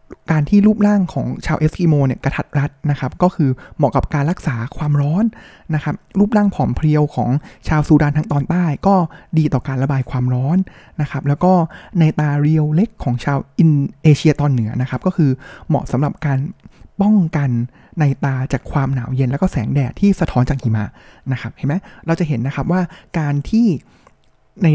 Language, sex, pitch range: Thai, male, 135-170 Hz